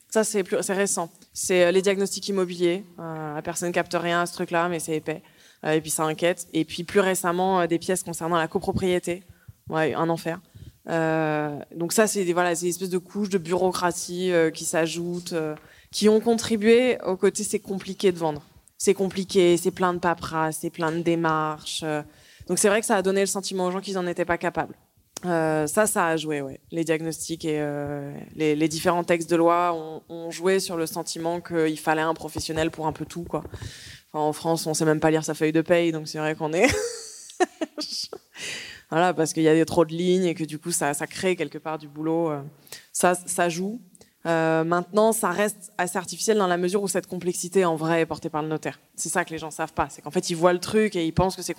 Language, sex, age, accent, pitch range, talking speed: French, female, 20-39, French, 160-185 Hz, 225 wpm